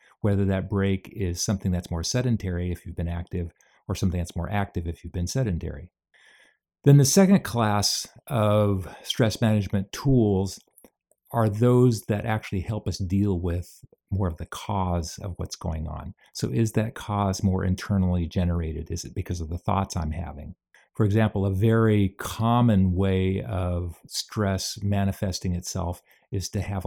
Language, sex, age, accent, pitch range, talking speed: English, male, 50-69, American, 90-105 Hz, 165 wpm